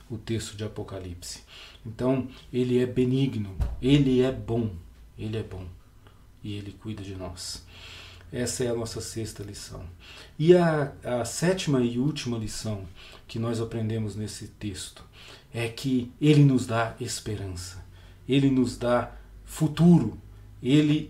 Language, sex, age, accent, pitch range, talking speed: Portuguese, male, 40-59, Brazilian, 105-145 Hz, 135 wpm